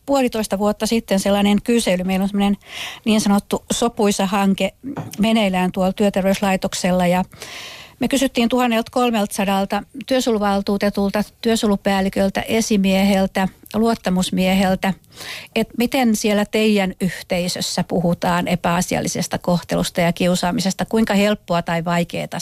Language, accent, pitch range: Finnish, native, 180-220 Hz